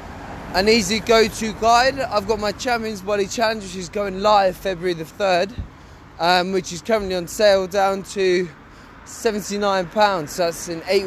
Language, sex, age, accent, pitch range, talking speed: English, male, 20-39, British, 155-205 Hz, 170 wpm